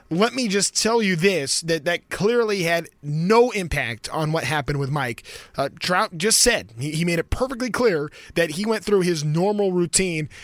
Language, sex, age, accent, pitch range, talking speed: English, male, 20-39, American, 165-215 Hz, 195 wpm